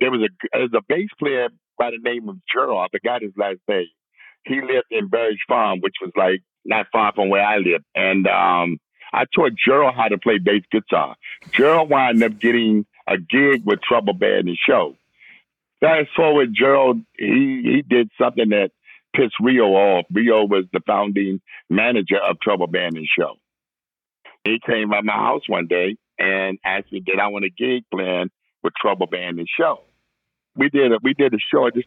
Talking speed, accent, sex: 195 wpm, American, male